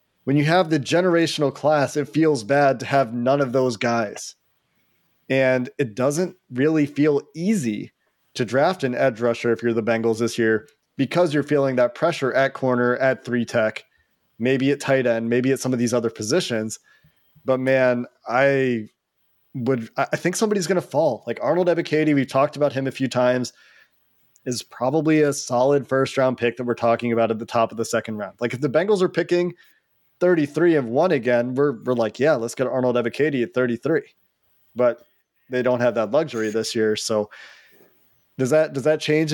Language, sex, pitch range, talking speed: English, male, 120-150 Hz, 190 wpm